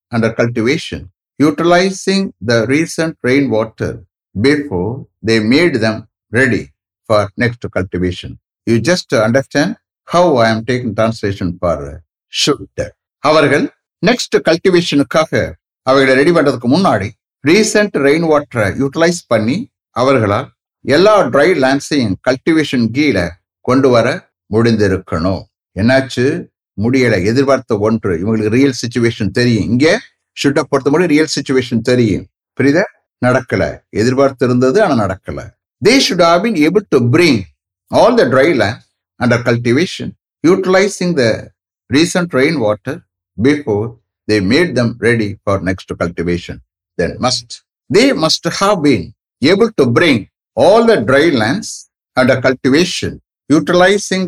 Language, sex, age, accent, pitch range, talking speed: English, male, 60-79, Indian, 105-145 Hz, 100 wpm